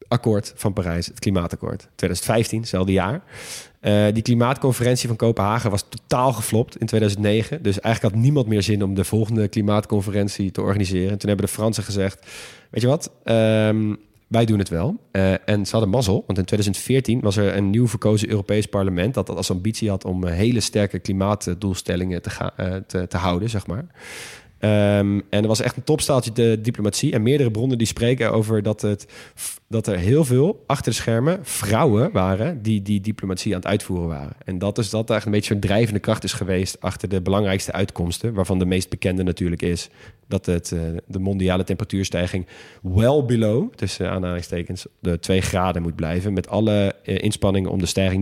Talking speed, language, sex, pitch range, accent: 185 wpm, Dutch, male, 95-110 Hz, Dutch